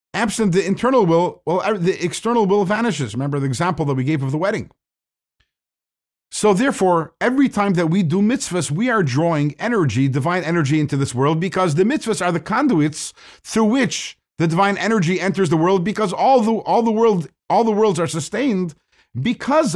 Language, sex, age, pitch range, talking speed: English, male, 50-69, 125-185 Hz, 185 wpm